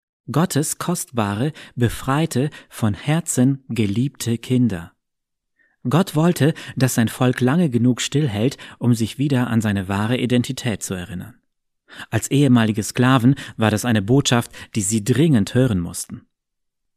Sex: male